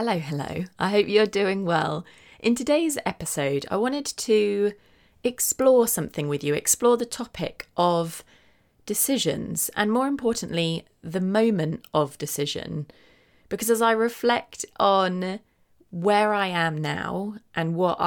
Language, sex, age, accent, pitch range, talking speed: English, female, 30-49, British, 160-215 Hz, 135 wpm